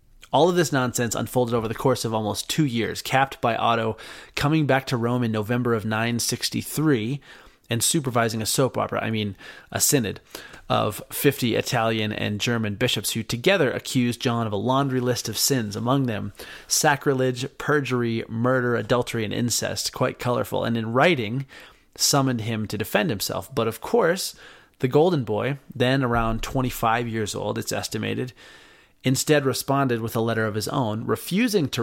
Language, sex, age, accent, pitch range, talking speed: English, male, 30-49, American, 115-135 Hz, 170 wpm